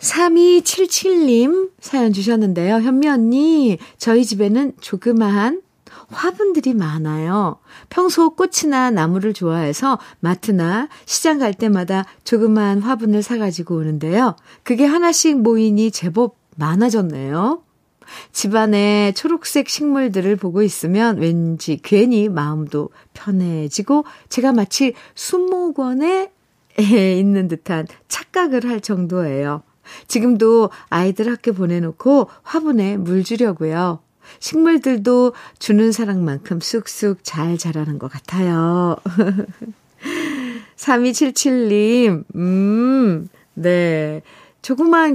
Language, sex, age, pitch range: Korean, female, 50-69, 175-255 Hz